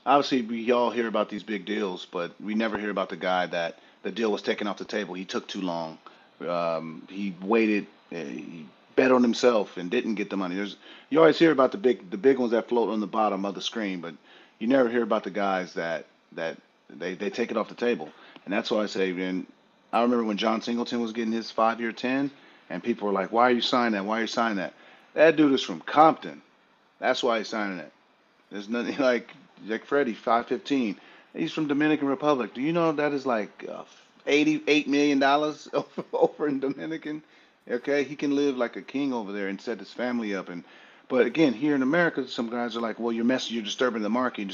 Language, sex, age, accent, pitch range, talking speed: English, male, 40-59, American, 100-130 Hz, 230 wpm